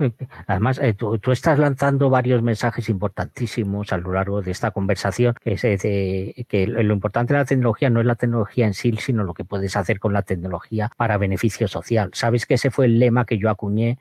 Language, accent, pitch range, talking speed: Spanish, Spanish, 100-125 Hz, 205 wpm